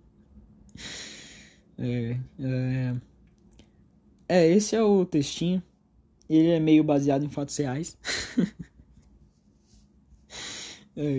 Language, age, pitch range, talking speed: Portuguese, 20-39, 140-175 Hz, 85 wpm